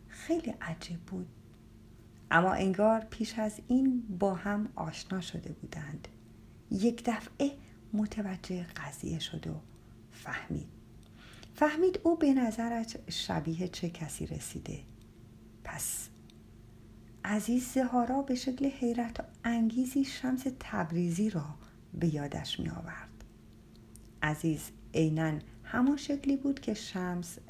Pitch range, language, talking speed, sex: 160-245 Hz, Persian, 105 wpm, female